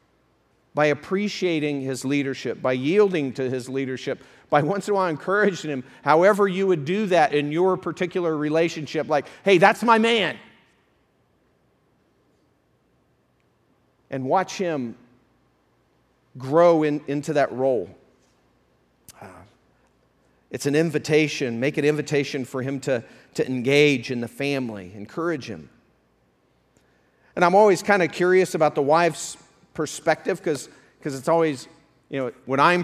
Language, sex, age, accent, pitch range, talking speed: English, male, 40-59, American, 135-170 Hz, 130 wpm